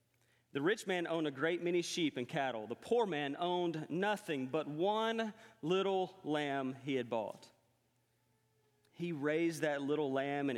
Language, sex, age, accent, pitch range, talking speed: English, male, 40-59, American, 135-185 Hz, 160 wpm